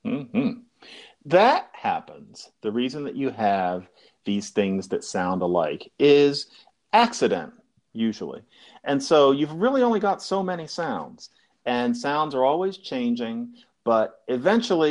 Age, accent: 40-59, American